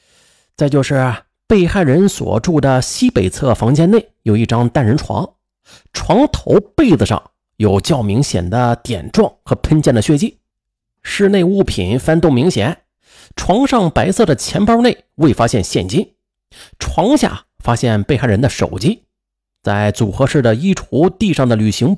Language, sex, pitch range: Chinese, male, 105-170 Hz